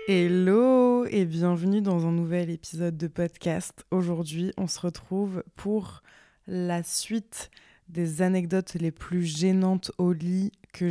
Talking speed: 130 wpm